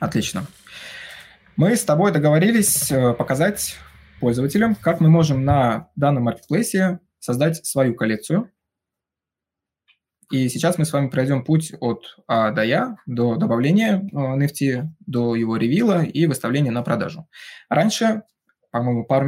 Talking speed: 125 wpm